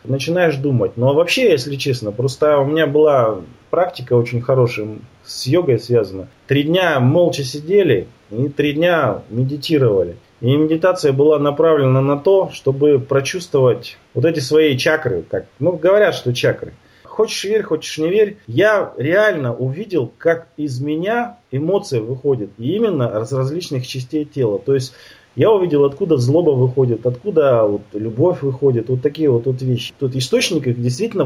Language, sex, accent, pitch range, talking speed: Russian, male, native, 125-160 Hz, 150 wpm